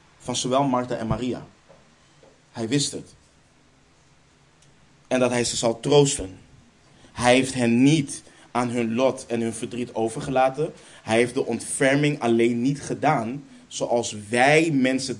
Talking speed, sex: 140 wpm, male